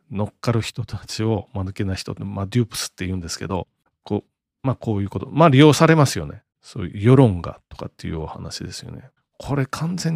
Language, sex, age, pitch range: Japanese, male, 40-59, 100-145 Hz